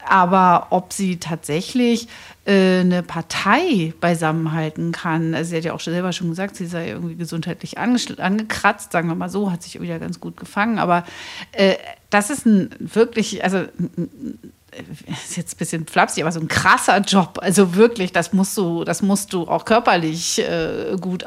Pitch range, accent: 175-235 Hz, German